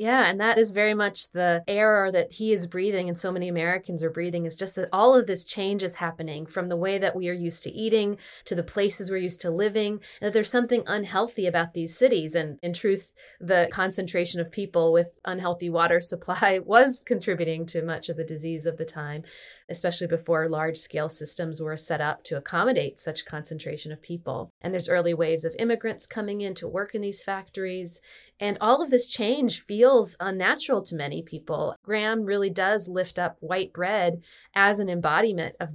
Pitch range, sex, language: 170-200 Hz, female, English